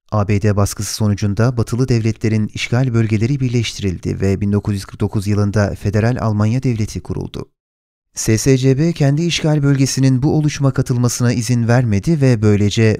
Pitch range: 105-130 Hz